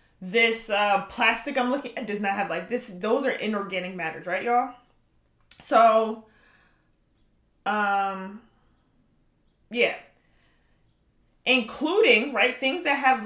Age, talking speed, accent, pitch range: 20-39, 115 wpm, American, 200-255 Hz